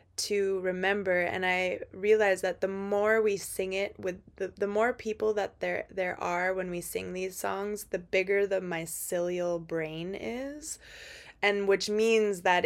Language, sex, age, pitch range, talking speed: English, female, 20-39, 180-210 Hz, 165 wpm